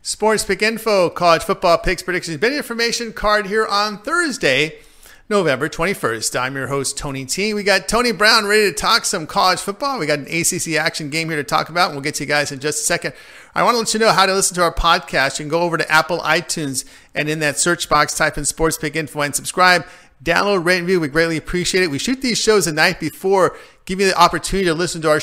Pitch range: 150-190 Hz